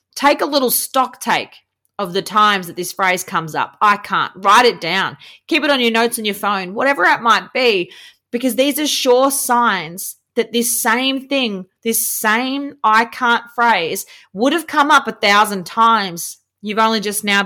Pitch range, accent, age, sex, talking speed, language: 205-275 Hz, Australian, 30-49, female, 190 wpm, English